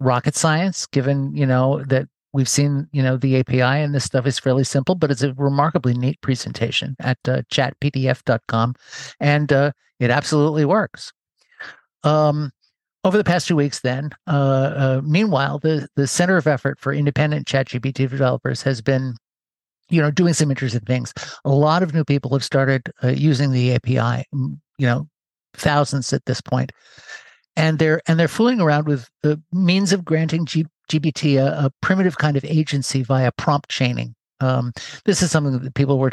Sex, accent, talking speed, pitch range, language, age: male, American, 175 wpm, 135-160 Hz, English, 50-69